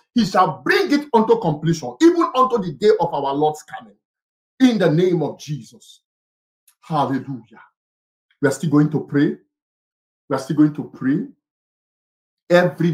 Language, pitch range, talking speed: English, 155-220 Hz, 155 wpm